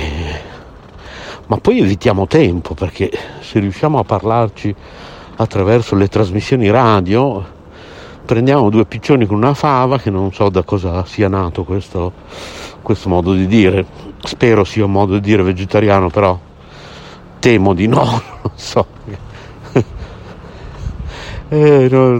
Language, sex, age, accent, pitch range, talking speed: Italian, male, 60-79, native, 90-110 Hz, 125 wpm